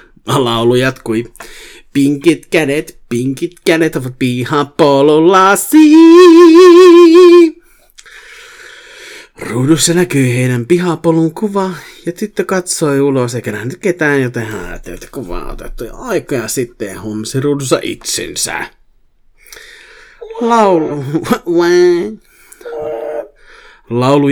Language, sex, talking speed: Finnish, male, 80 wpm